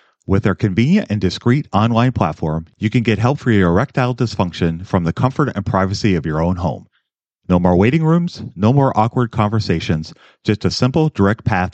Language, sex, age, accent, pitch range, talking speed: English, male, 40-59, American, 95-125 Hz, 190 wpm